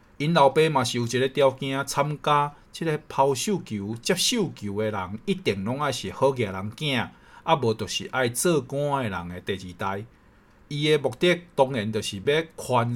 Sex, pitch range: male, 110-150 Hz